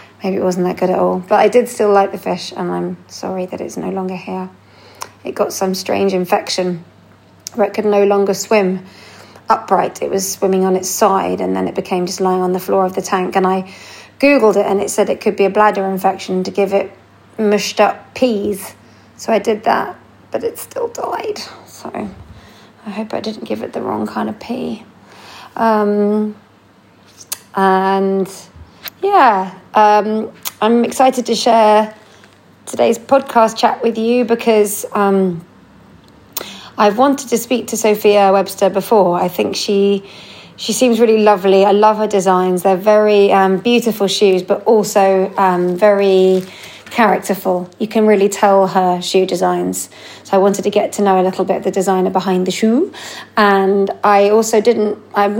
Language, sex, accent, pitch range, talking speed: English, female, British, 185-215 Hz, 175 wpm